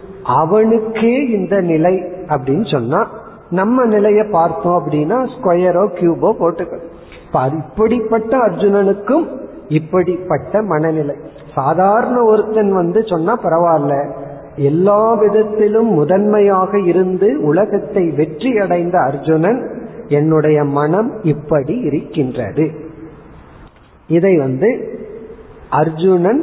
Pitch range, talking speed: 155-215 Hz, 80 wpm